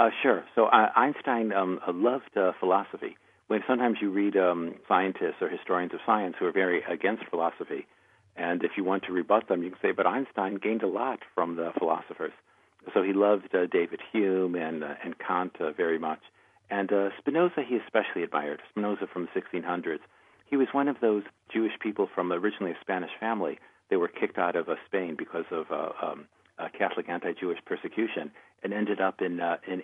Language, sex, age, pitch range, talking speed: English, male, 50-69, 95-120 Hz, 195 wpm